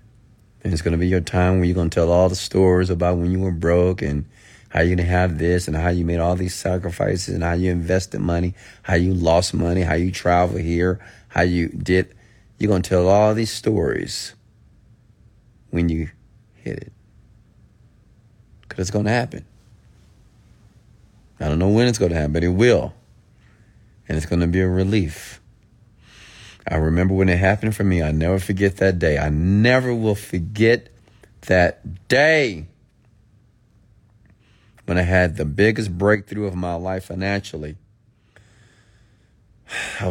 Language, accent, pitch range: English, American, 85-110 Hz